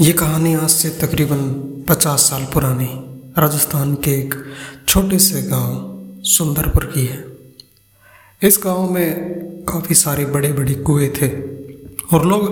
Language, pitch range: Hindi, 130-165 Hz